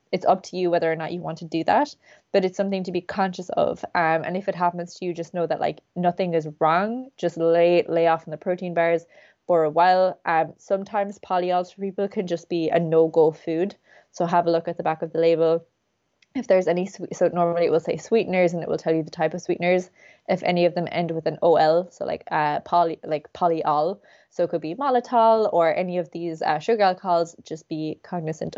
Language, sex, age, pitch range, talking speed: English, female, 20-39, 165-190 Hz, 240 wpm